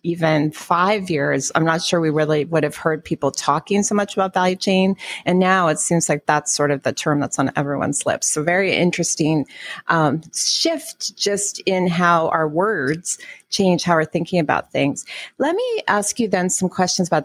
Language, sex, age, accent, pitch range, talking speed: English, female, 30-49, American, 155-200 Hz, 195 wpm